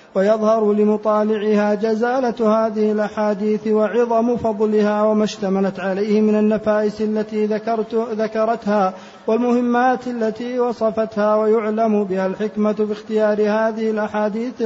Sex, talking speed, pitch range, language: male, 95 wpm, 215-235 Hz, Arabic